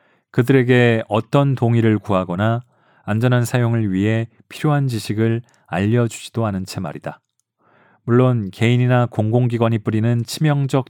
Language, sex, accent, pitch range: Korean, male, native, 105-125 Hz